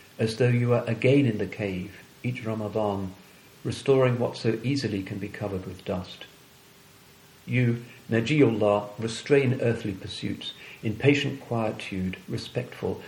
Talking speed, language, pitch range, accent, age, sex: 130 wpm, English, 105-130 Hz, British, 50-69, male